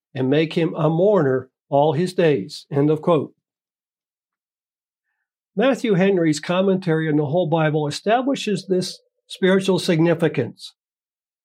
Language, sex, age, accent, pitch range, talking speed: English, male, 60-79, American, 155-190 Hz, 115 wpm